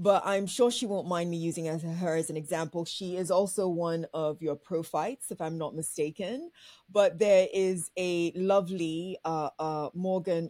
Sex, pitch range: female, 170-235 Hz